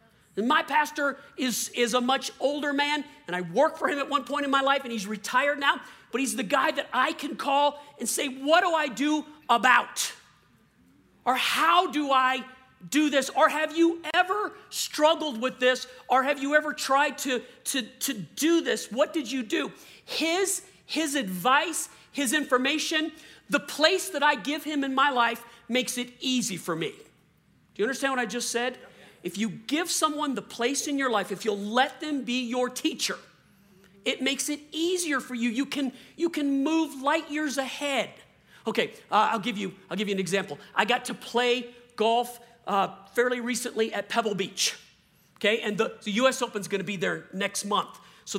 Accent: American